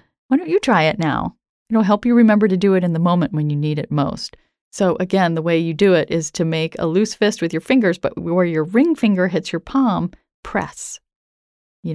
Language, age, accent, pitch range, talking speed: English, 40-59, American, 160-215 Hz, 235 wpm